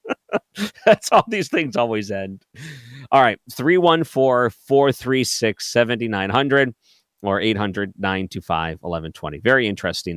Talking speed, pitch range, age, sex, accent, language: 100 wpm, 95-130 Hz, 40-59, male, American, English